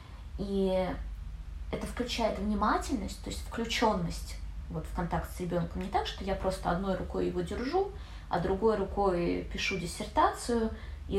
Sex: female